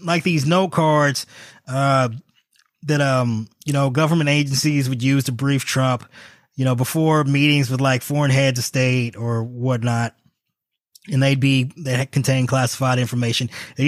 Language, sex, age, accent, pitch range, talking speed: English, male, 20-39, American, 125-150 Hz, 155 wpm